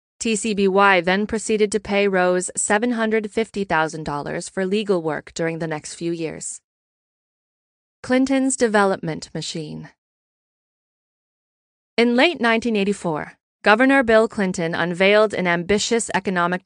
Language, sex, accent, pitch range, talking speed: English, female, American, 175-220 Hz, 100 wpm